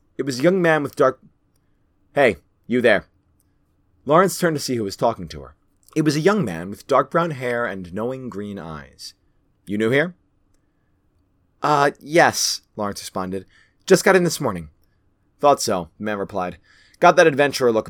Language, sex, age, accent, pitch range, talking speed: English, male, 30-49, American, 95-150 Hz, 180 wpm